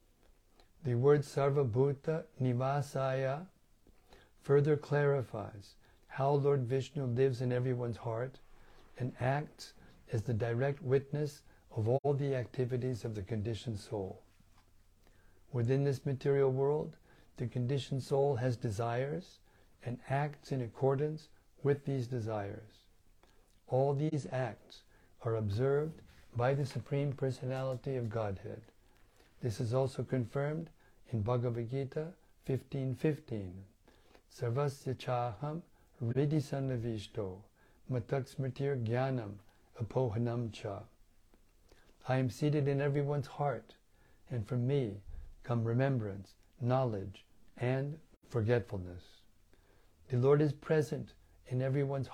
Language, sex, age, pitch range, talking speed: English, male, 60-79, 110-140 Hz, 100 wpm